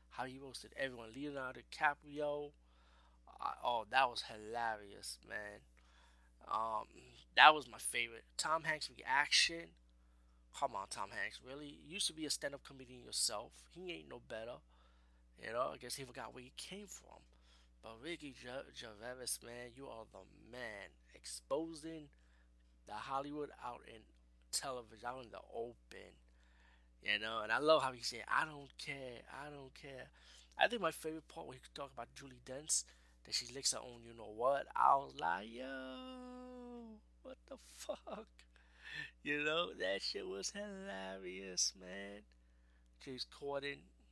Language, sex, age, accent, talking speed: English, male, 20-39, American, 155 wpm